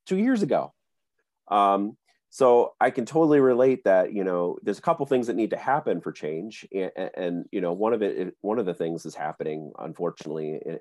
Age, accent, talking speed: 30-49, American, 210 wpm